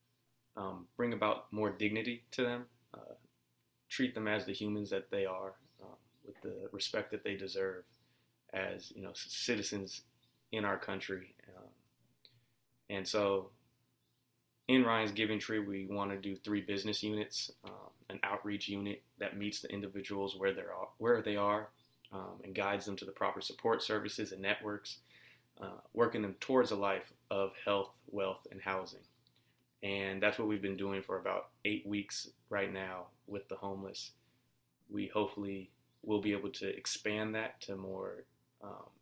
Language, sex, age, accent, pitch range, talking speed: English, male, 20-39, American, 95-105 Hz, 165 wpm